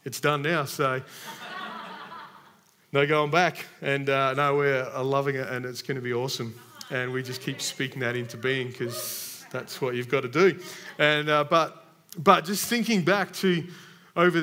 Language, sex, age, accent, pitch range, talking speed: English, male, 30-49, Australian, 140-170 Hz, 180 wpm